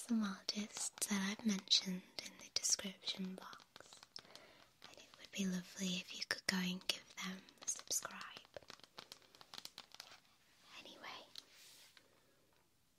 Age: 20-39